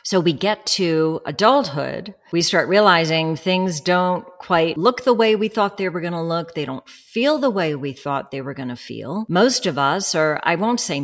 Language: English